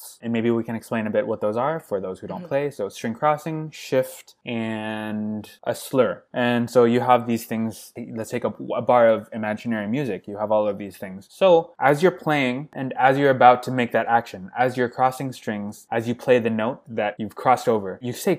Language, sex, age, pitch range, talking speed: English, male, 20-39, 105-130 Hz, 225 wpm